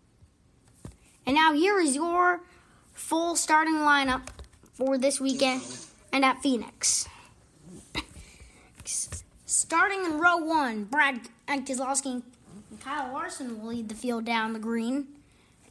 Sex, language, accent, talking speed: female, English, American, 115 wpm